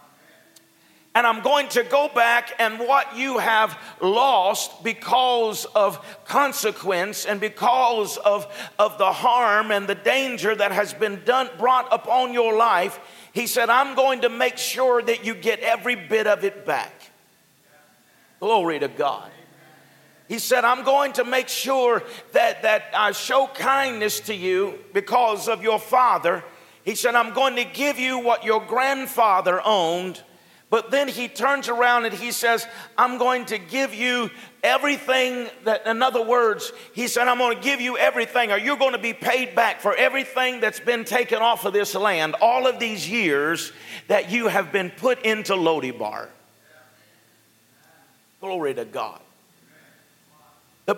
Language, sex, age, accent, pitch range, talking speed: English, male, 50-69, American, 205-255 Hz, 160 wpm